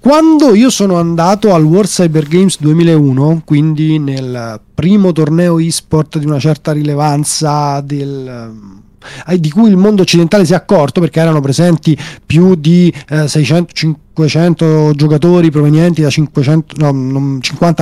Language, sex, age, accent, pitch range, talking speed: Italian, male, 30-49, native, 155-190 Hz, 130 wpm